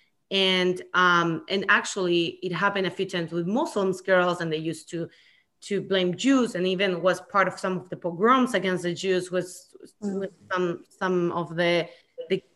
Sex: female